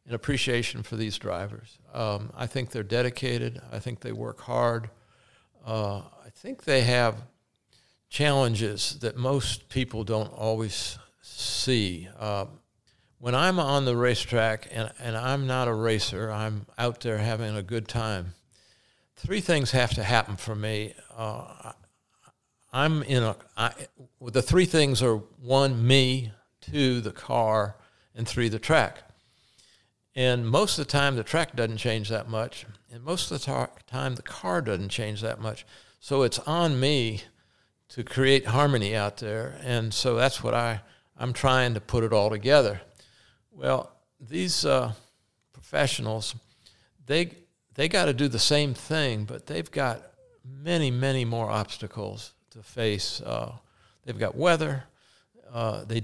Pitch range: 110-135 Hz